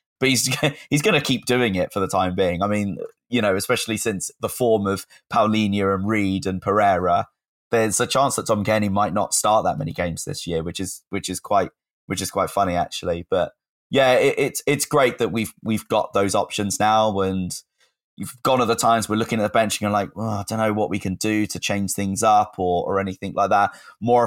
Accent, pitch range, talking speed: British, 95-110 Hz, 235 wpm